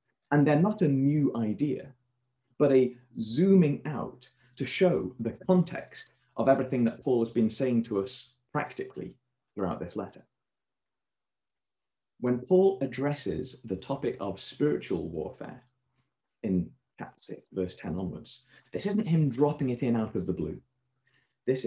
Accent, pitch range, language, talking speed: British, 115-135 Hz, English, 140 wpm